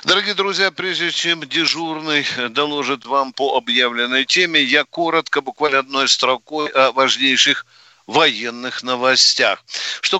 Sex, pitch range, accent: male, 135-160 Hz, native